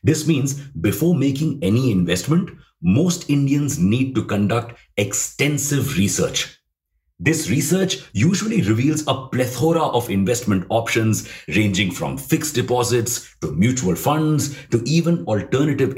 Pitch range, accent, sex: 105-145 Hz, Indian, male